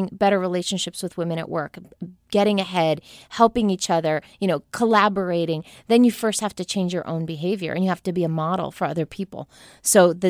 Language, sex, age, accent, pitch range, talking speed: English, female, 20-39, American, 175-215 Hz, 205 wpm